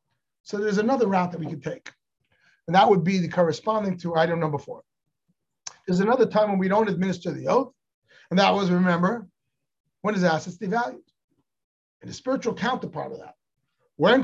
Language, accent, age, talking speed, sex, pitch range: English, American, 40-59, 175 wpm, male, 170-225 Hz